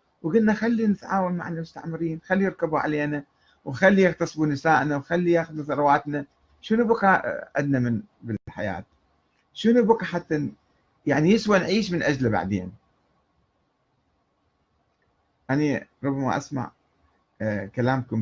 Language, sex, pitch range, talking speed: Arabic, male, 110-150 Hz, 105 wpm